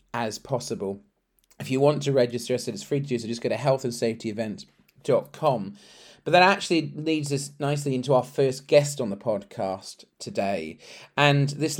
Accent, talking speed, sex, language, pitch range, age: British, 175 wpm, male, English, 110-140 Hz, 40-59